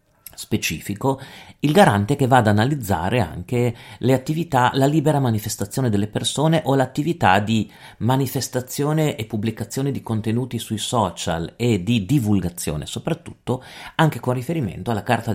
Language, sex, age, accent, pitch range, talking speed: Italian, male, 40-59, native, 95-125 Hz, 135 wpm